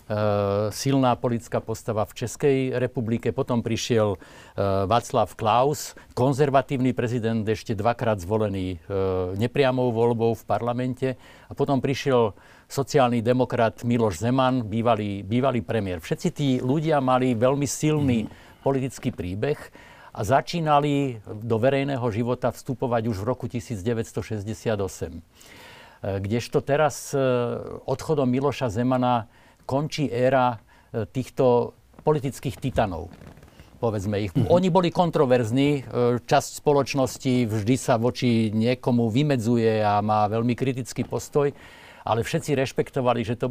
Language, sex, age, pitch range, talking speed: Slovak, male, 50-69, 110-135 Hz, 115 wpm